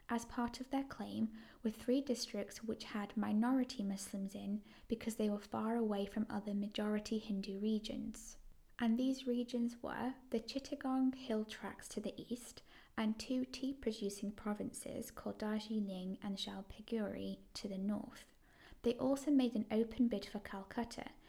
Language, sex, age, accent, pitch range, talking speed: English, female, 10-29, British, 210-245 Hz, 150 wpm